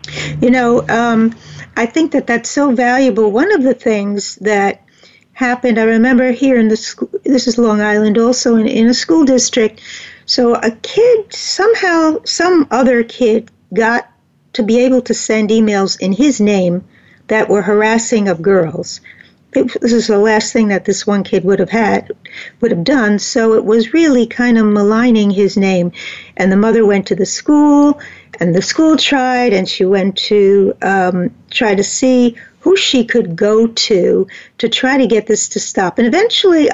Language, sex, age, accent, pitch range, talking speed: English, female, 60-79, American, 210-255 Hz, 180 wpm